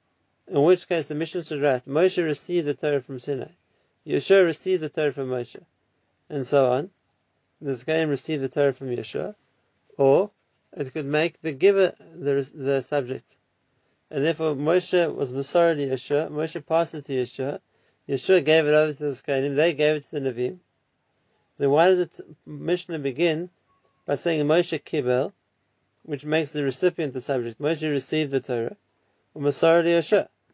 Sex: male